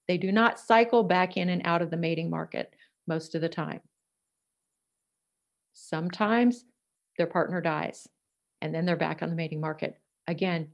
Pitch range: 170-220 Hz